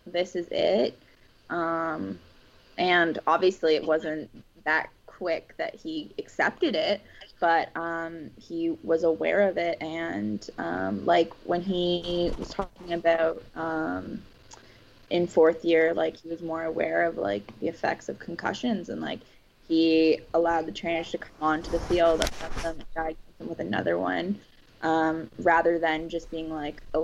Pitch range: 160-180 Hz